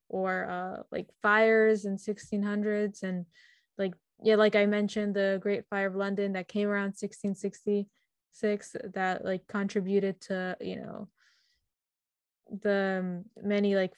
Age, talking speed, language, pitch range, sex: 10-29, 130 wpm, English, 190-220 Hz, female